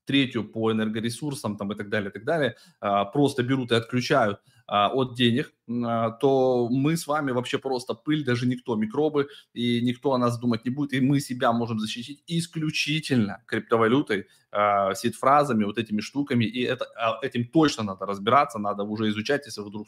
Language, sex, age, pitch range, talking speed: Russian, male, 20-39, 110-135 Hz, 170 wpm